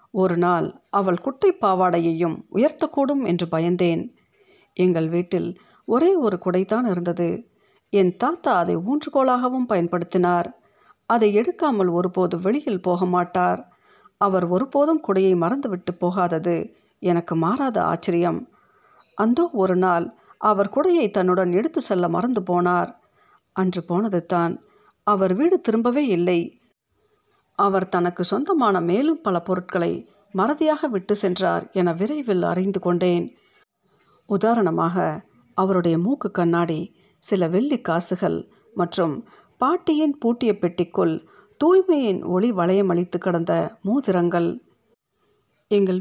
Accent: native